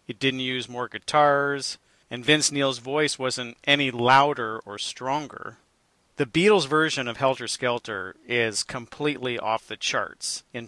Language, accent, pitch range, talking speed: English, American, 125-150 Hz, 145 wpm